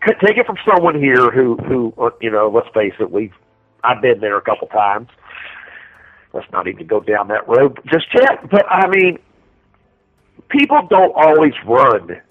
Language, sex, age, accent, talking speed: English, male, 50-69, American, 175 wpm